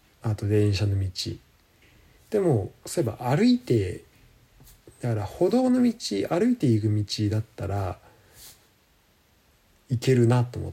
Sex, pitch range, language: male, 100-130 Hz, Japanese